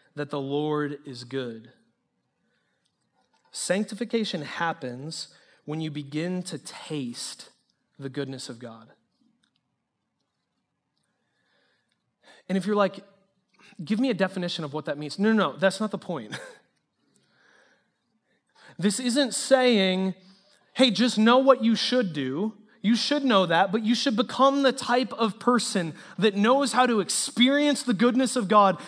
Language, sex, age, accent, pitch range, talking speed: English, male, 30-49, American, 175-235 Hz, 135 wpm